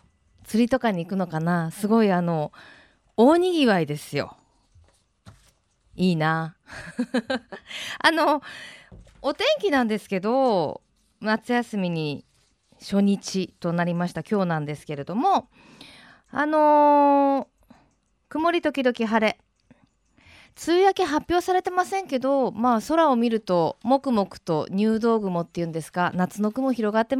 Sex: female